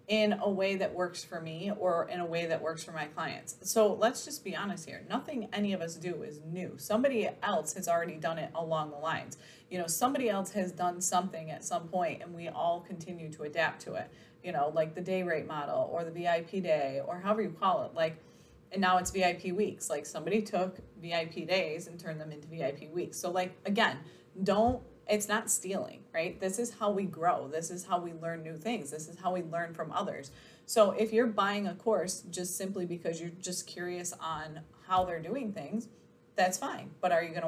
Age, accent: 20-39, American